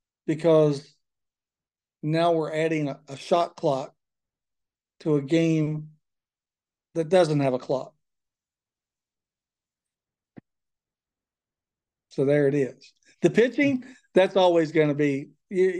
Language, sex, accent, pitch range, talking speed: English, male, American, 145-175 Hz, 105 wpm